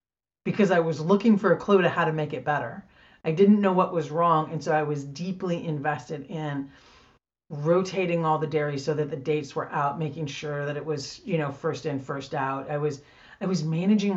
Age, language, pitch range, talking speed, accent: 40-59, English, 145-170 Hz, 220 wpm, American